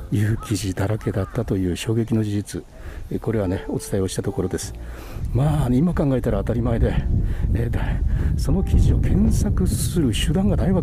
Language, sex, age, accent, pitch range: Japanese, male, 60-79, native, 95-125 Hz